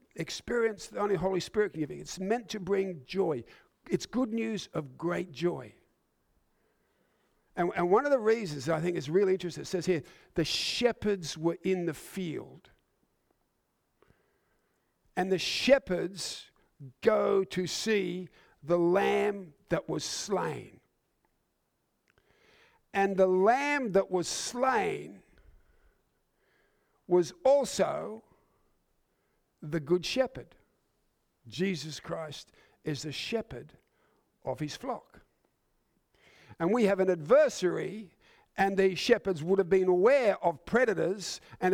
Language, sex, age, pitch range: English, male, 50-69, 175-225 Hz